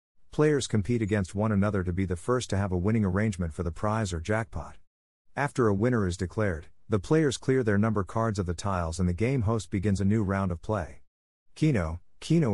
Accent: American